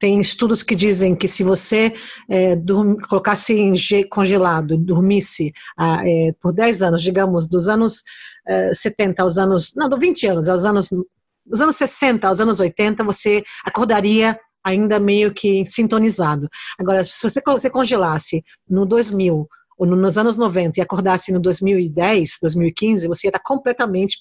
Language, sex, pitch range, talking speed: English, female, 175-215 Hz, 165 wpm